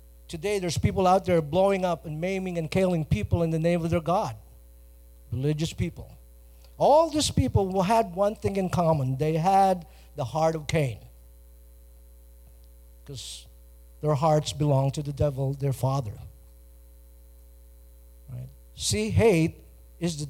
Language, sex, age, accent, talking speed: English, male, 50-69, American, 140 wpm